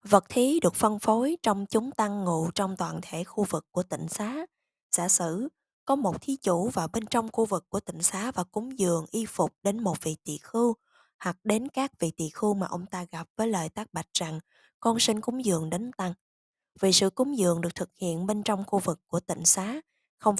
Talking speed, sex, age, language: 225 wpm, female, 20-39, Vietnamese